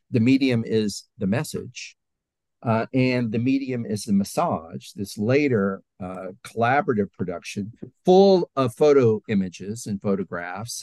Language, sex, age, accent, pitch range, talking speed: English, male, 50-69, American, 100-140 Hz, 125 wpm